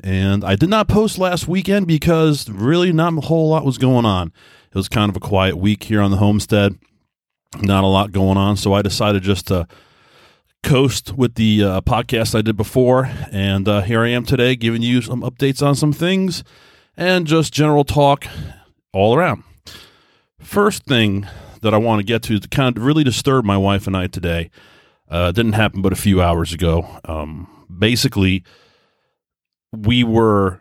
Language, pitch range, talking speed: English, 95-120 Hz, 185 wpm